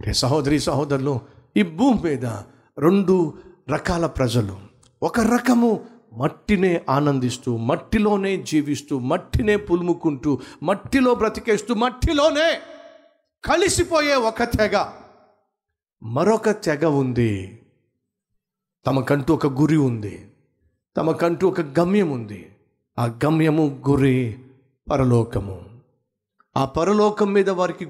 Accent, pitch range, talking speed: native, 130-195 Hz, 85 wpm